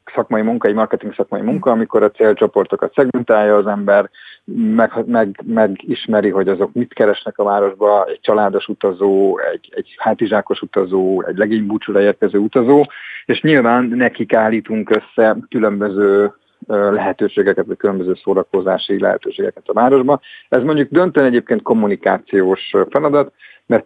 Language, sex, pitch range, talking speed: Hungarian, male, 105-170 Hz, 130 wpm